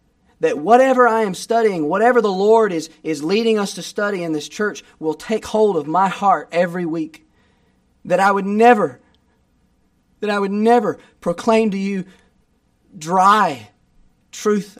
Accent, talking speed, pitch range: American, 155 wpm, 150-215 Hz